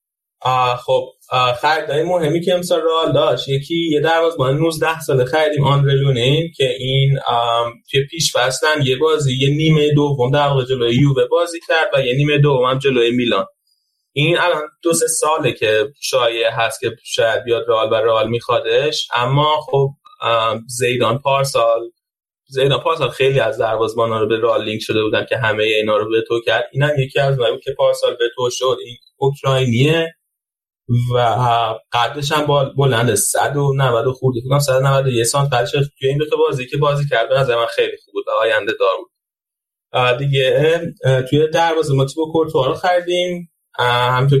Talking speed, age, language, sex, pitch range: 160 wpm, 20-39, Persian, male, 125-160 Hz